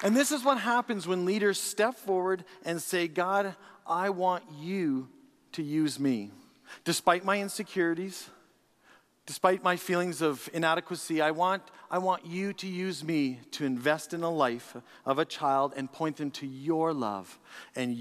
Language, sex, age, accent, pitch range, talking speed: English, male, 40-59, American, 130-180 Hz, 165 wpm